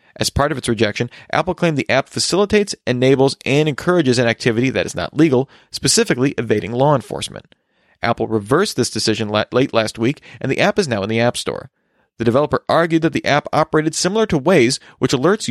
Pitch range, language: 115-155 Hz, English